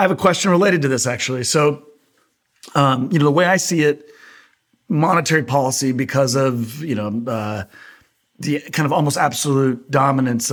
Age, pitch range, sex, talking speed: 40-59, 115-145 Hz, male, 170 wpm